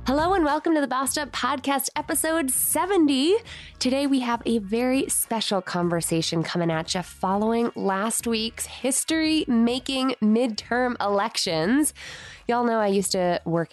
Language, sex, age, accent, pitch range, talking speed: English, female, 20-39, American, 190-280 Hz, 140 wpm